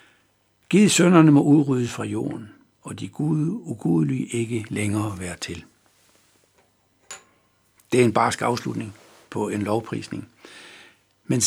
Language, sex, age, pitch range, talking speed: Danish, male, 60-79, 100-145 Hz, 115 wpm